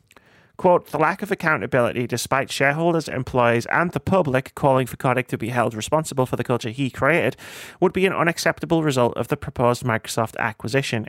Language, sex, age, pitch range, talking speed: English, male, 30-49, 120-155 Hz, 180 wpm